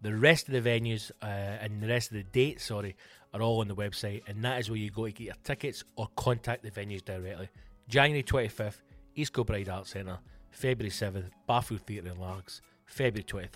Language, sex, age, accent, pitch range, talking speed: English, male, 30-49, British, 105-150 Hz, 205 wpm